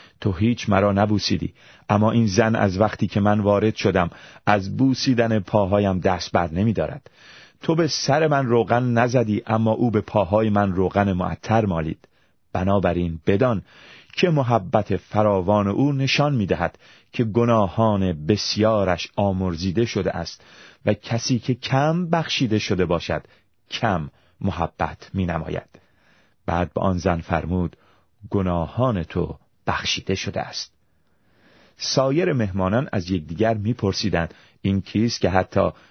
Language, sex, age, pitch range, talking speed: Persian, male, 30-49, 95-115 Hz, 130 wpm